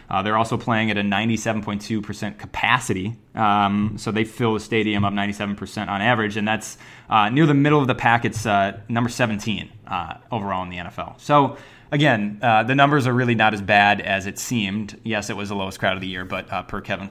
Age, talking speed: 20-39, 220 wpm